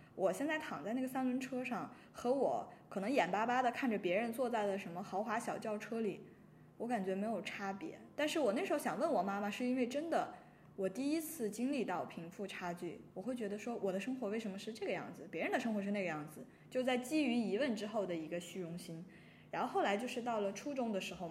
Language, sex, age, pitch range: Chinese, female, 20-39, 195-250 Hz